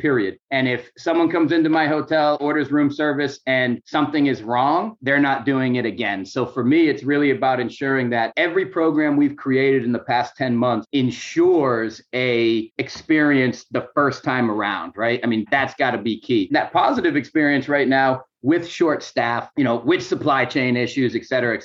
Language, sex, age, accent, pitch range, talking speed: English, male, 40-59, American, 125-150 Hz, 190 wpm